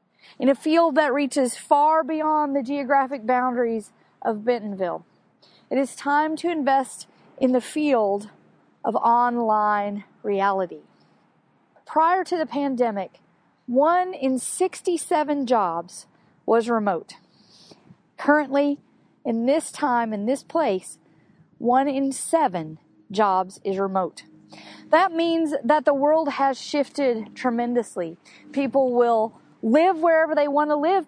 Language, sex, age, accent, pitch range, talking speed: English, female, 40-59, American, 235-315 Hz, 120 wpm